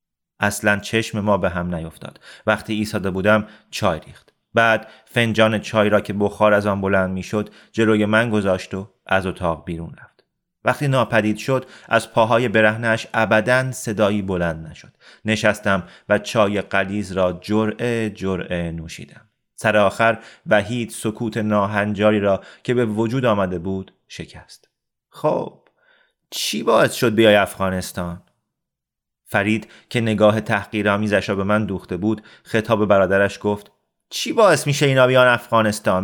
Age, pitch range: 30-49, 95-120 Hz